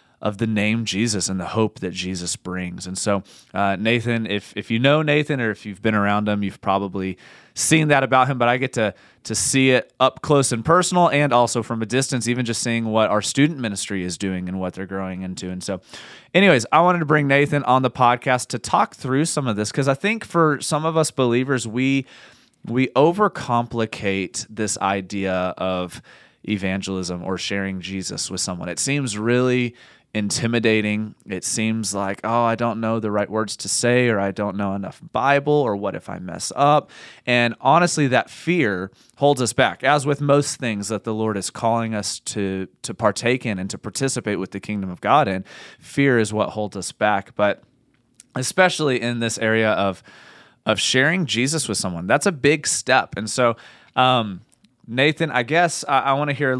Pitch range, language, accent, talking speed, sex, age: 100-135 Hz, English, American, 200 wpm, male, 30-49